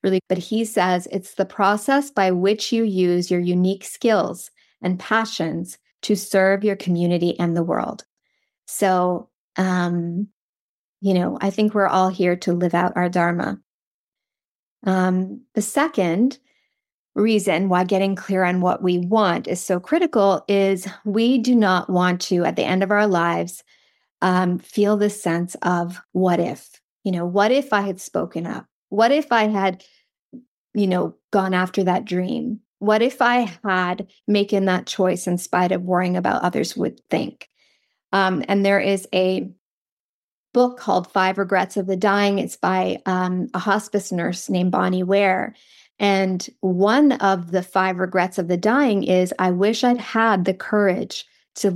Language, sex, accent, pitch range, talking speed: English, female, American, 180-205 Hz, 160 wpm